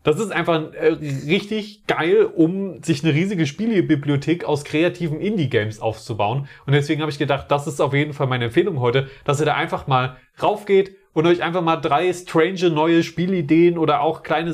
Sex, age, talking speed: male, 30-49, 185 wpm